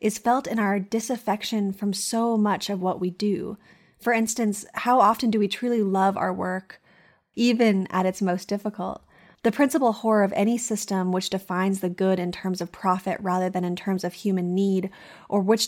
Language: English